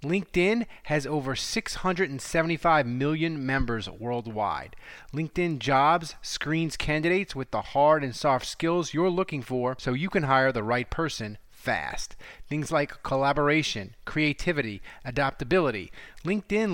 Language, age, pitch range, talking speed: English, 30-49, 130-170 Hz, 120 wpm